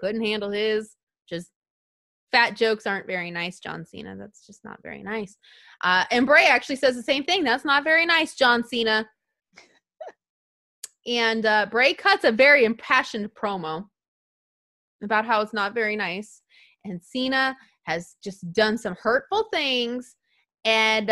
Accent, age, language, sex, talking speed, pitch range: American, 20-39, English, female, 150 wpm, 195-270 Hz